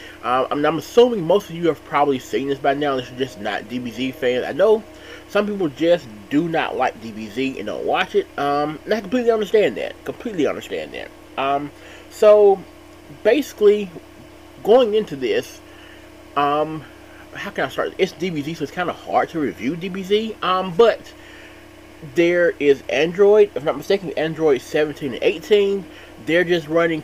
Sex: male